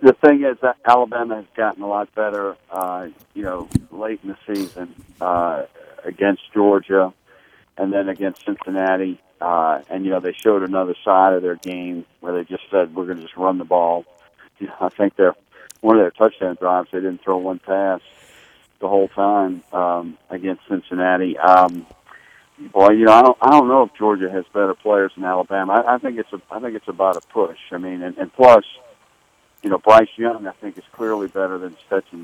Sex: male